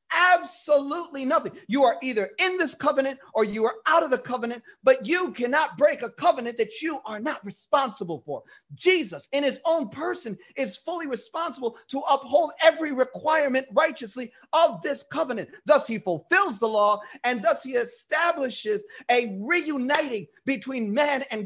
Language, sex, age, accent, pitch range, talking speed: English, male, 30-49, American, 225-320 Hz, 160 wpm